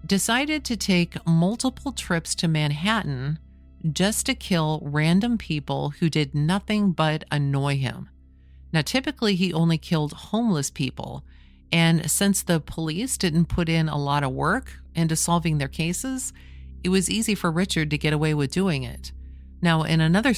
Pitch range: 135-175 Hz